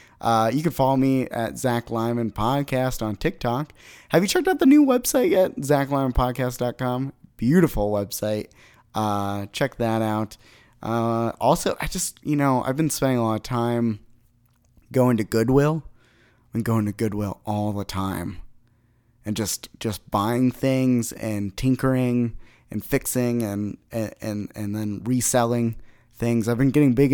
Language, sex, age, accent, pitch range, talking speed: English, male, 20-39, American, 110-130 Hz, 155 wpm